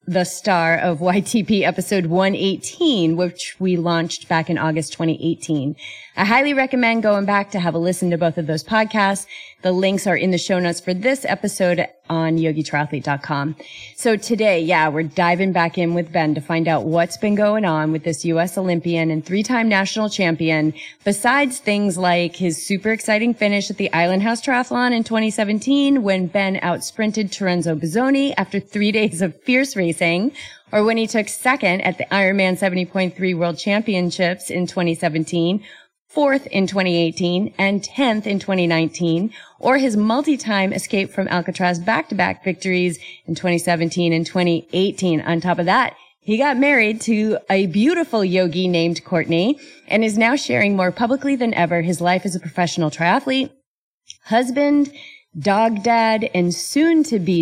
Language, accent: English, American